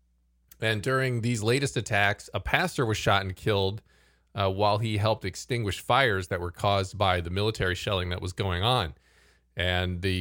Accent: American